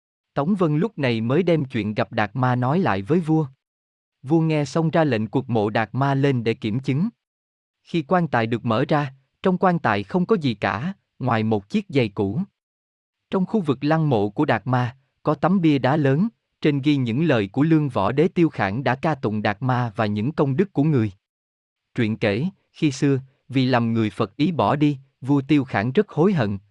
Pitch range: 115-160 Hz